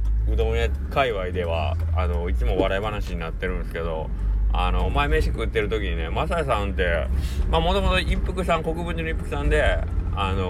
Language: Japanese